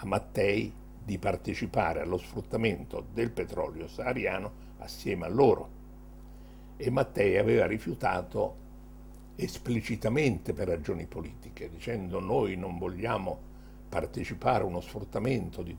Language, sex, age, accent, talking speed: English, male, 60-79, Italian, 110 wpm